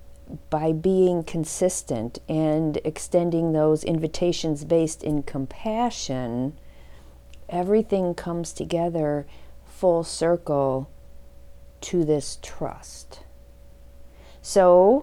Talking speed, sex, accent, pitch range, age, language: 75 wpm, female, American, 140-180 Hz, 50-69, English